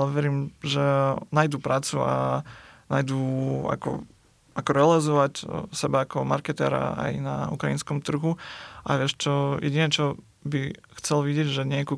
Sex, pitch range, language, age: male, 135-145 Hz, Slovak, 20-39